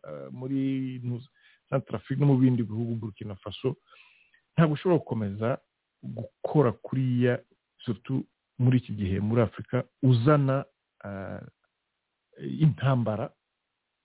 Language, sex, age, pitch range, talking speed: English, male, 50-69, 110-135 Hz, 90 wpm